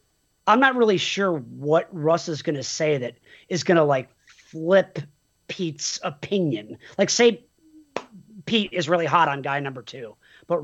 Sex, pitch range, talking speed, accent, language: male, 160-220 Hz, 165 wpm, American, English